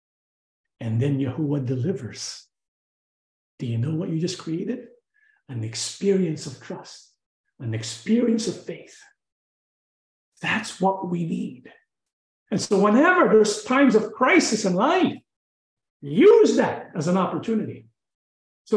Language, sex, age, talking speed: English, male, 50-69, 120 wpm